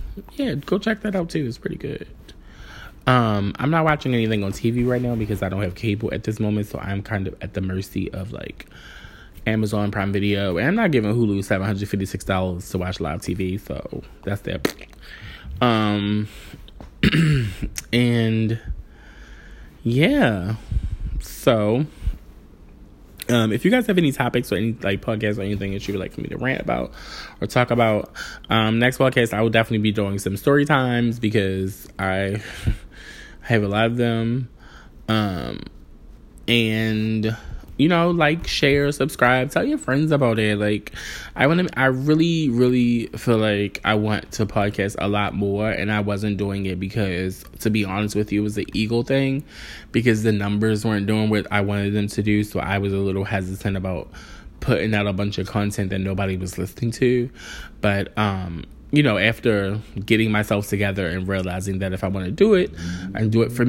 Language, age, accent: English, 20-39, American